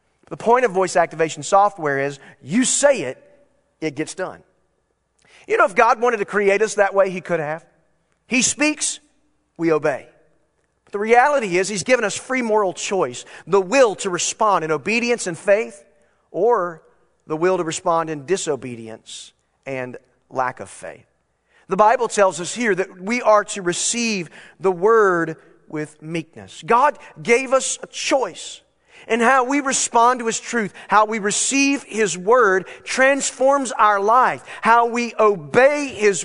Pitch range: 155-230 Hz